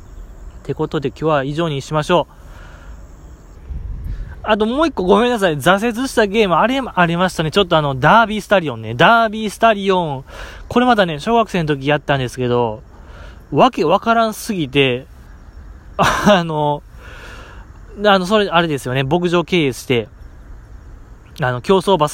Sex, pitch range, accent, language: male, 125-195 Hz, native, Japanese